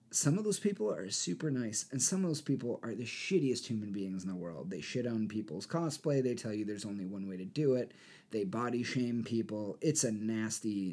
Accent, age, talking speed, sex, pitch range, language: American, 30-49, 230 wpm, male, 100-125 Hz, English